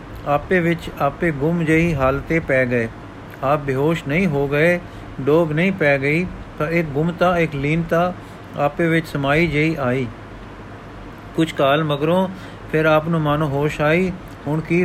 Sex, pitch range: male, 135-170 Hz